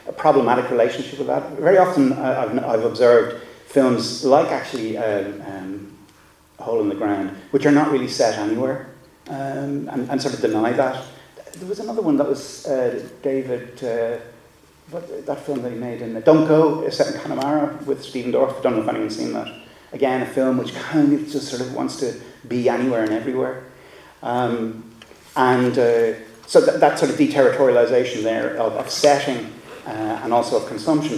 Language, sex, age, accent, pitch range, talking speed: English, male, 30-49, British, 115-150 Hz, 185 wpm